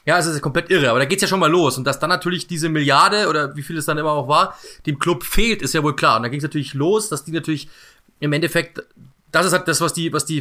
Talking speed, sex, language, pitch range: 305 wpm, male, German, 145-170 Hz